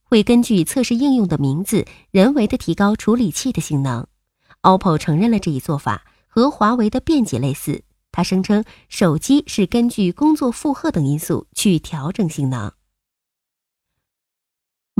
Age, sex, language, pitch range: 20-39, female, Chinese, 155-240 Hz